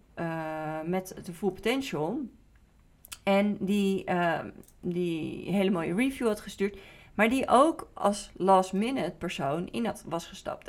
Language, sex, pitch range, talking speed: Dutch, female, 180-215 Hz, 130 wpm